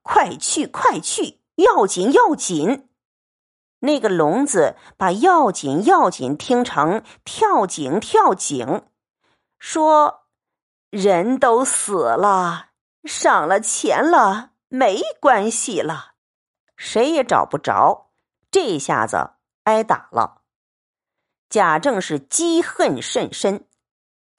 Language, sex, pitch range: Chinese, female, 225-340 Hz